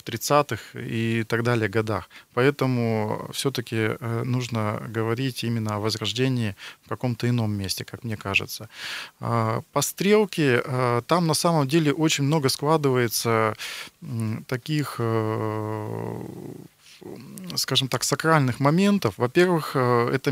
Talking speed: 105 wpm